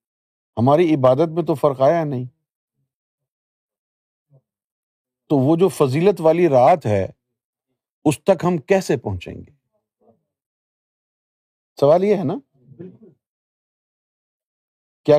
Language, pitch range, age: Urdu, 120-165 Hz, 50-69